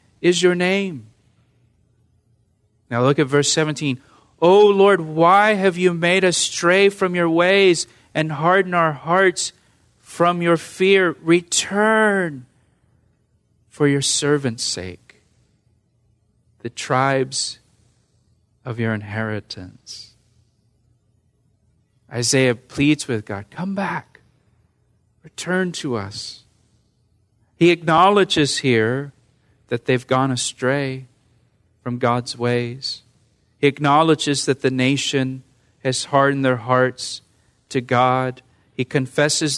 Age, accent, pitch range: 40-59, American, 115-145 Hz